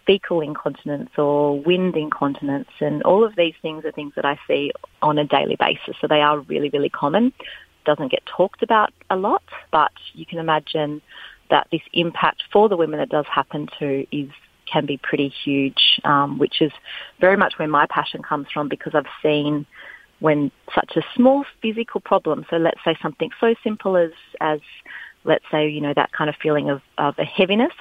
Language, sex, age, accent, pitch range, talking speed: English, female, 30-49, Australian, 145-165 Hz, 190 wpm